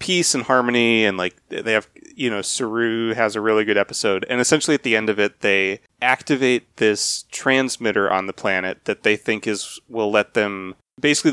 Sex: male